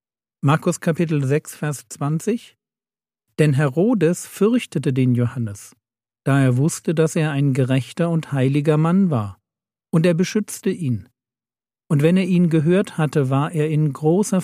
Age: 50-69